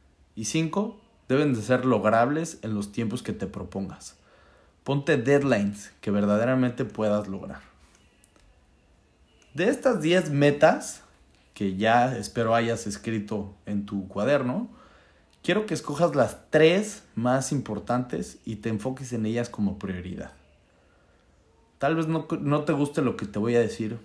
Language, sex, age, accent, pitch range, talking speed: Spanish, male, 30-49, Mexican, 105-145 Hz, 140 wpm